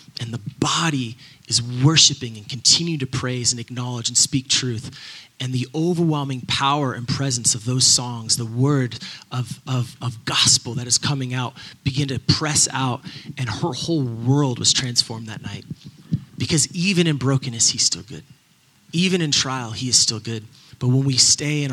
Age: 30-49